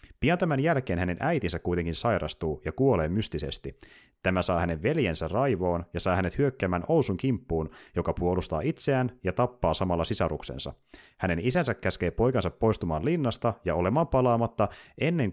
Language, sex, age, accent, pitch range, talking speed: Finnish, male, 30-49, native, 85-130 Hz, 150 wpm